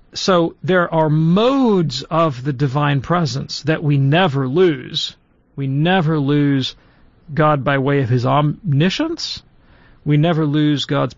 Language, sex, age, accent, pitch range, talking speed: English, male, 40-59, American, 145-185 Hz, 135 wpm